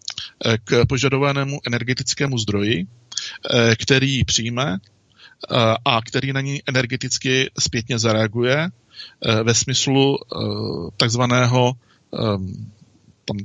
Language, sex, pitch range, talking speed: Czech, male, 115-130 Hz, 75 wpm